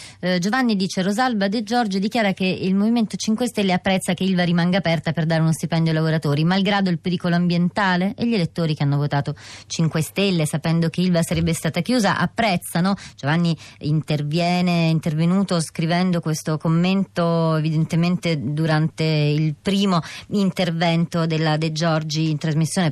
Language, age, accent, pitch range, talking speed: Italian, 30-49, native, 165-195 Hz, 150 wpm